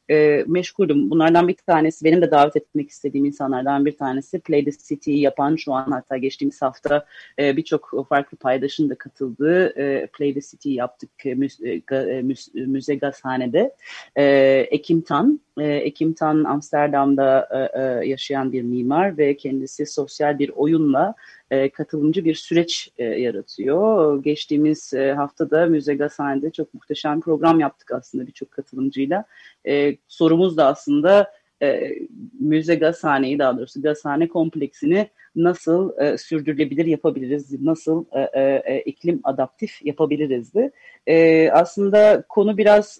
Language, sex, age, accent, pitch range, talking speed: Turkish, female, 30-49, native, 140-175 Hz, 125 wpm